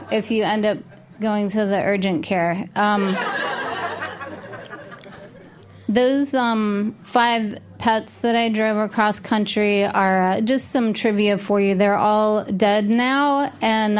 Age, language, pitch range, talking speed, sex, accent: 20-39, English, 215-255 Hz, 135 wpm, female, American